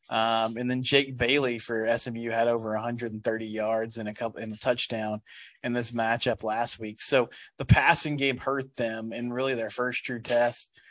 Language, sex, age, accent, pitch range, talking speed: English, male, 20-39, American, 115-135 Hz, 185 wpm